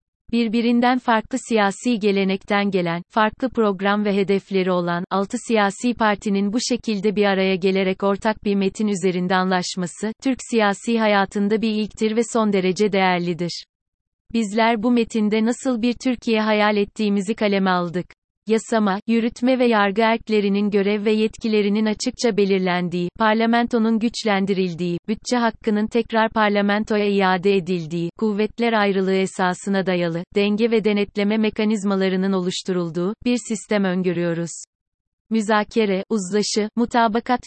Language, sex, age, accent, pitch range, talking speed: Turkish, female, 30-49, native, 190-220 Hz, 120 wpm